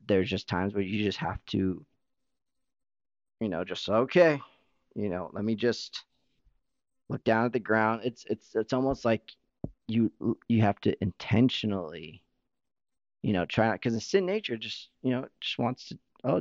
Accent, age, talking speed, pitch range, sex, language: American, 30-49, 170 wpm, 100-130 Hz, male, English